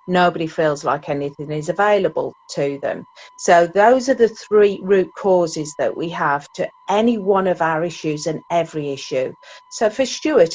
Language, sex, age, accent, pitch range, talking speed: English, female, 50-69, British, 165-225 Hz, 170 wpm